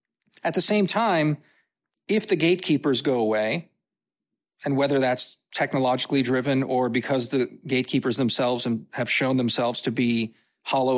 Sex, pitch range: male, 130-170 Hz